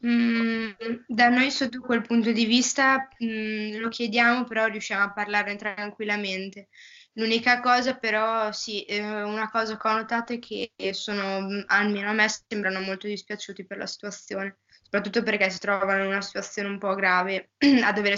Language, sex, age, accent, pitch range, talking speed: Italian, female, 20-39, native, 195-220 Hz, 155 wpm